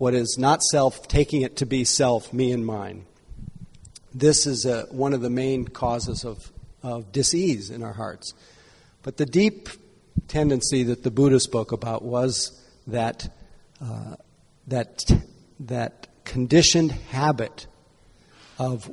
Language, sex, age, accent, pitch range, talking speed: English, male, 50-69, American, 115-145 Hz, 135 wpm